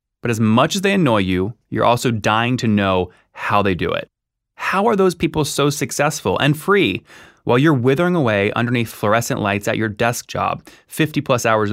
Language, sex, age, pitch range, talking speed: English, male, 20-39, 105-140 Hz, 195 wpm